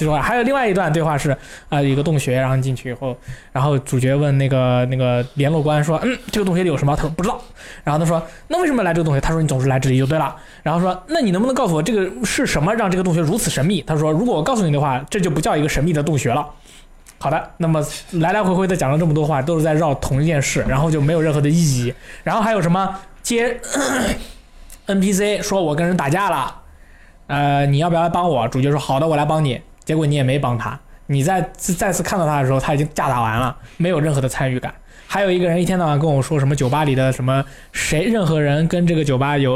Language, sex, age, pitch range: Chinese, male, 20-39, 135-175 Hz